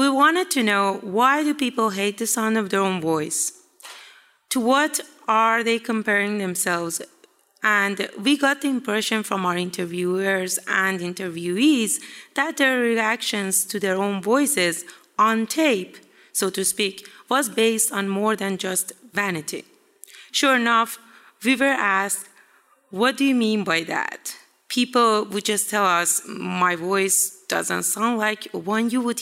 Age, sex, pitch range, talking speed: 30-49, female, 190-245 Hz, 150 wpm